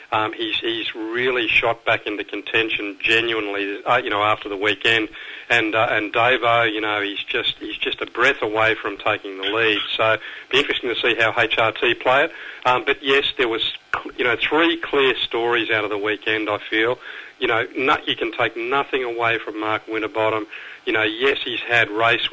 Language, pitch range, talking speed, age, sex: English, 110-145 Hz, 200 wpm, 40-59, male